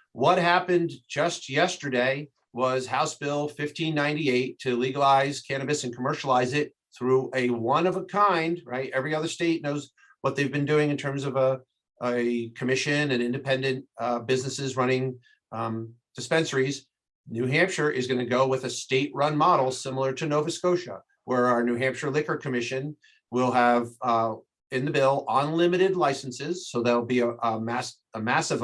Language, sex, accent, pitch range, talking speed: English, male, American, 125-145 Hz, 165 wpm